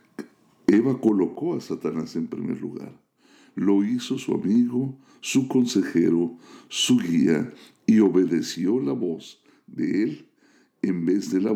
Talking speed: 130 wpm